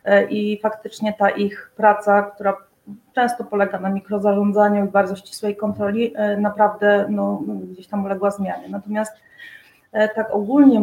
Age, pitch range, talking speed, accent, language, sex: 30-49, 205-225 Hz, 125 wpm, native, Polish, female